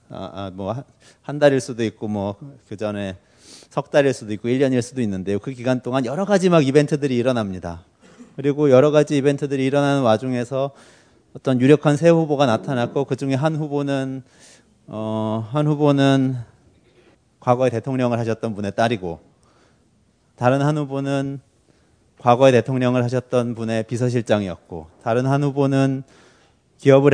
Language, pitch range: Korean, 115-145 Hz